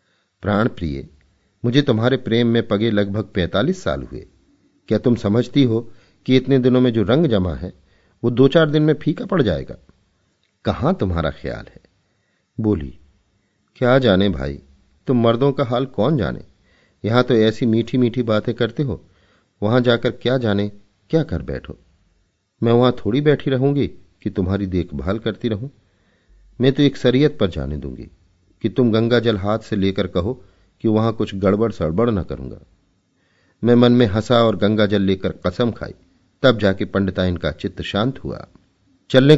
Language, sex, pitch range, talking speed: Hindi, male, 90-120 Hz, 170 wpm